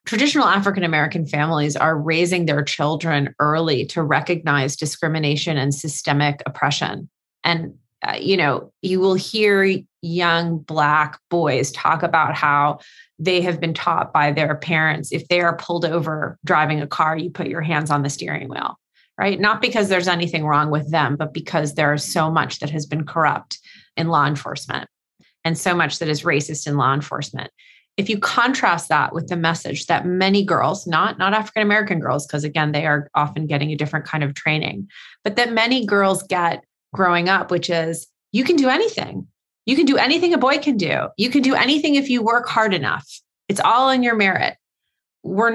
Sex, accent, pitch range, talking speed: female, American, 155-200 Hz, 185 wpm